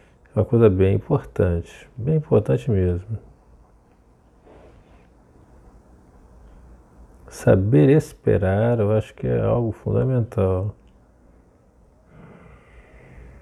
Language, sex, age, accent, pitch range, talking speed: Portuguese, male, 50-69, Brazilian, 80-125 Hz, 70 wpm